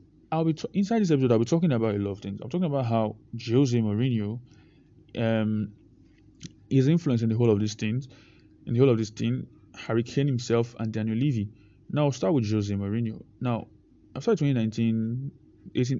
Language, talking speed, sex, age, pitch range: English, 190 wpm, male, 20-39, 110-135 Hz